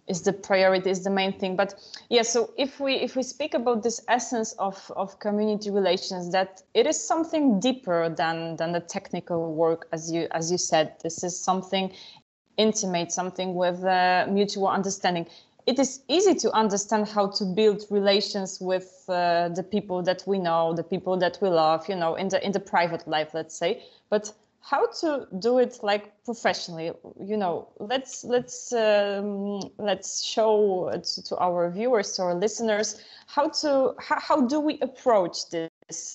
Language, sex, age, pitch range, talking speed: Polish, female, 20-39, 180-230 Hz, 175 wpm